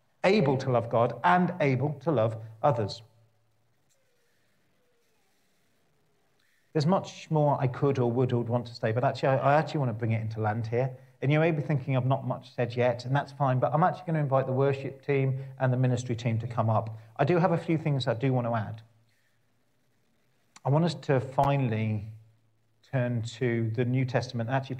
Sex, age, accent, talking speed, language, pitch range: male, 40-59, British, 195 wpm, English, 115-140 Hz